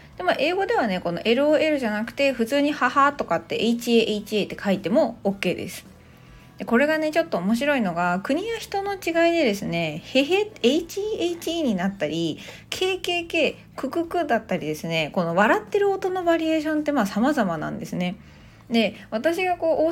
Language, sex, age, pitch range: Japanese, female, 20-39, 185-300 Hz